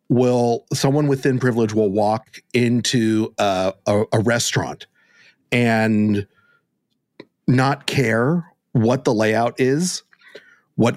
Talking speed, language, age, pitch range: 105 wpm, English, 40-59, 110-135 Hz